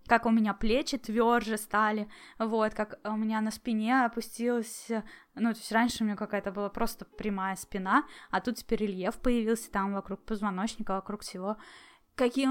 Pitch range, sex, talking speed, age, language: 220-275 Hz, female, 170 wpm, 10-29, Russian